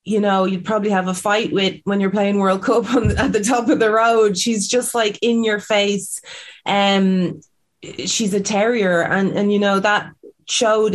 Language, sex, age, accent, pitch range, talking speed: English, female, 20-39, Irish, 180-210 Hz, 210 wpm